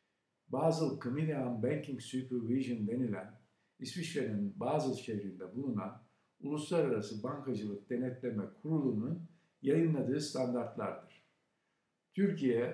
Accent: native